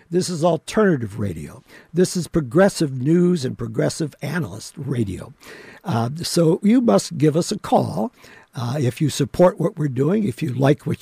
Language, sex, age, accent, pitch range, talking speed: English, male, 60-79, American, 145-180 Hz, 170 wpm